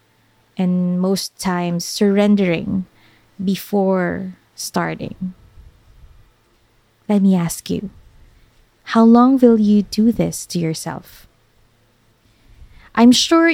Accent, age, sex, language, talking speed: Filipino, 20-39, female, English, 90 wpm